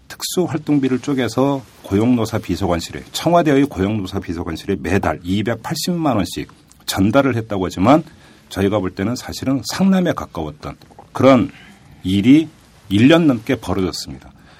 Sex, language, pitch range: male, Korean, 95-135 Hz